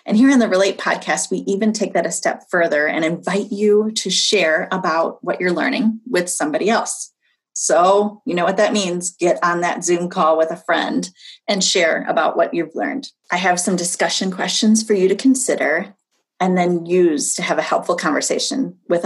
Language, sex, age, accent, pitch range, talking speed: English, female, 30-49, American, 175-230 Hz, 200 wpm